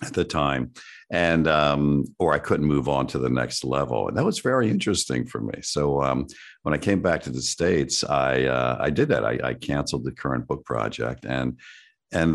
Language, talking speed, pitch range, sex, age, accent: English, 215 wpm, 65-75 Hz, male, 50-69, American